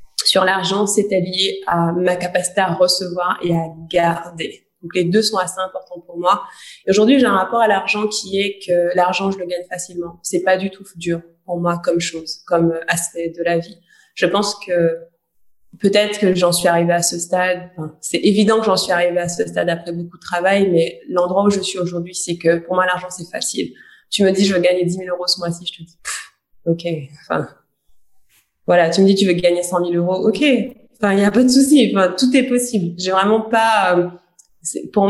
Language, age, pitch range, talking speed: French, 20-39, 175-195 Hz, 225 wpm